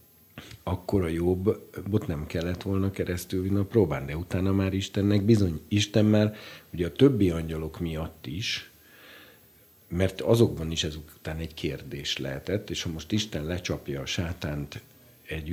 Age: 50-69